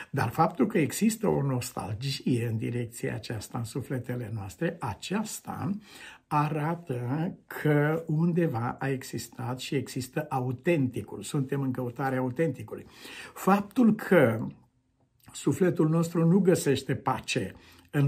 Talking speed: 110 wpm